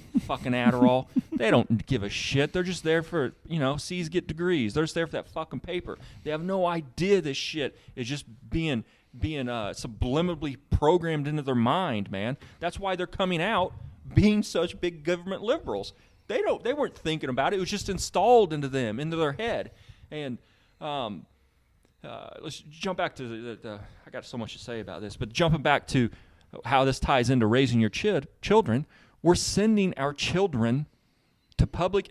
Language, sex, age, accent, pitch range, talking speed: English, male, 30-49, American, 120-170 Hz, 190 wpm